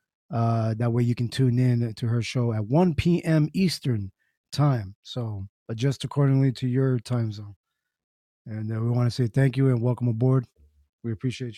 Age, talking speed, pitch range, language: 20-39, 180 wpm, 125-160 Hz, English